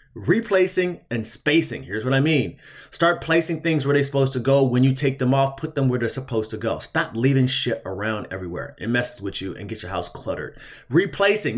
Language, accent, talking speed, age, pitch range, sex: English, American, 220 wpm, 30-49, 125-165 Hz, male